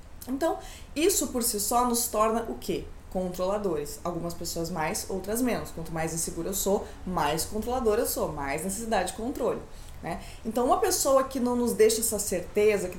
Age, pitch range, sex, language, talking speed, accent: 20-39, 190-255 Hz, female, Portuguese, 180 wpm, Brazilian